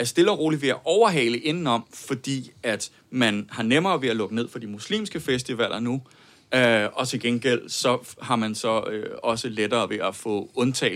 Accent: native